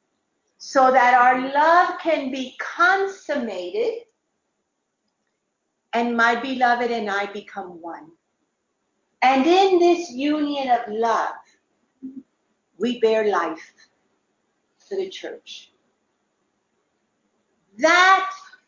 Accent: American